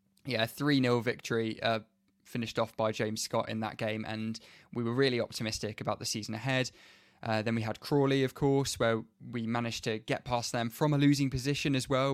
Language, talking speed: English, 205 wpm